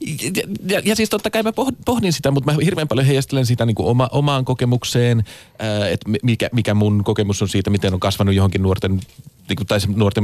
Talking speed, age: 210 wpm, 30-49